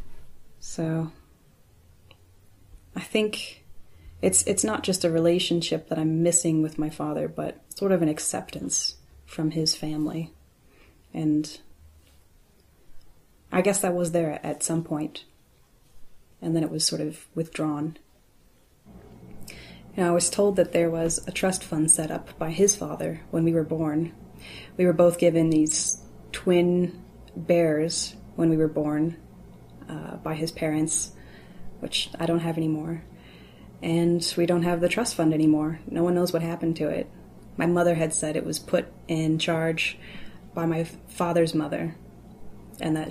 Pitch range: 155-175 Hz